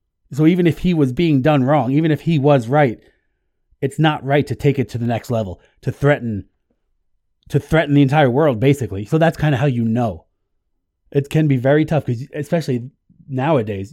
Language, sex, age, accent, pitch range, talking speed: English, male, 30-49, American, 95-145 Hz, 200 wpm